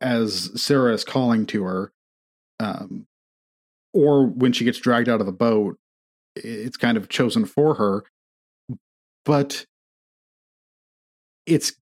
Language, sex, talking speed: English, male, 120 wpm